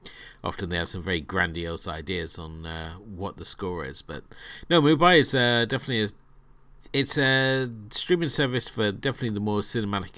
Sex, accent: male, British